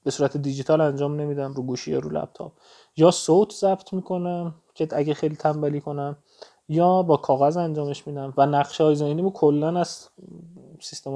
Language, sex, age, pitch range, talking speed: Persian, male, 30-49, 135-165 Hz, 160 wpm